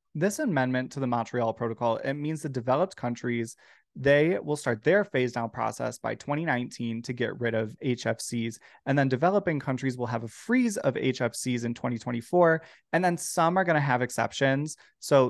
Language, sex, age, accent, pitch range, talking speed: English, male, 20-39, American, 120-155 Hz, 180 wpm